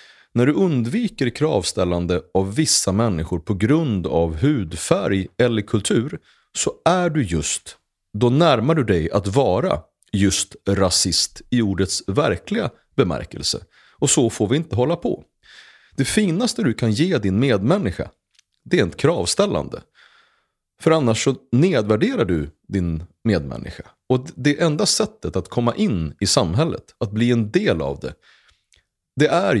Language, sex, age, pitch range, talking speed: Swedish, male, 30-49, 90-135 Hz, 145 wpm